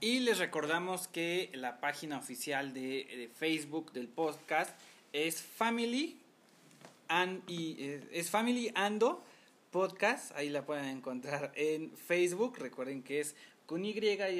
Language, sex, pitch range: Spanish, male, 135-165 Hz